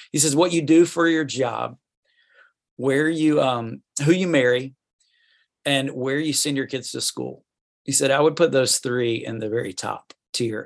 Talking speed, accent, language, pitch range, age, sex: 190 wpm, American, English, 115-145 Hz, 40-59, male